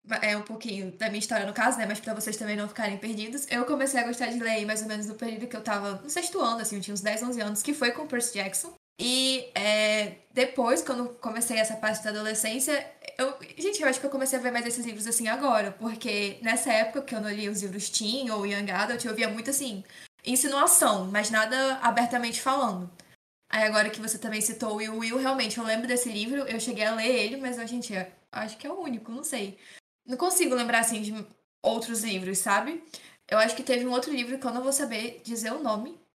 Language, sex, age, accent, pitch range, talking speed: Portuguese, female, 10-29, Brazilian, 215-250 Hz, 235 wpm